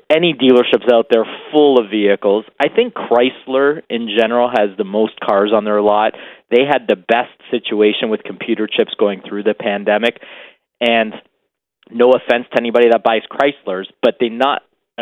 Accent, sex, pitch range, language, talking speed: American, male, 105-145 Hz, English, 165 wpm